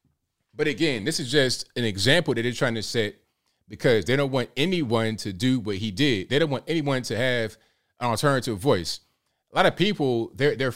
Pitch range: 110-150 Hz